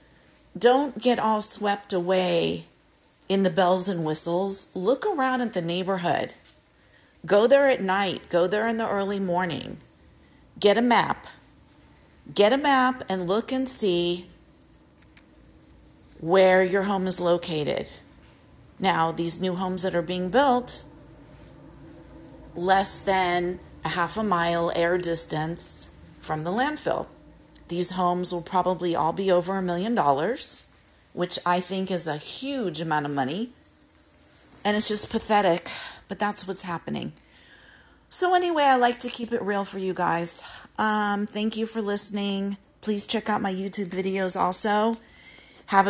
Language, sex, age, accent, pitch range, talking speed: English, female, 40-59, American, 175-210 Hz, 145 wpm